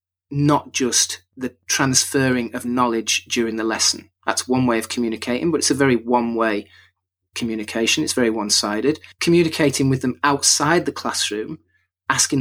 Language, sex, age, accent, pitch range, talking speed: English, male, 30-49, British, 115-145 Hz, 145 wpm